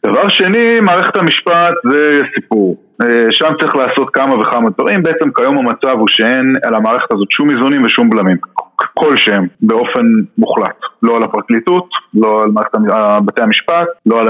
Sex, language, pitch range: male, Hebrew, 110-135 Hz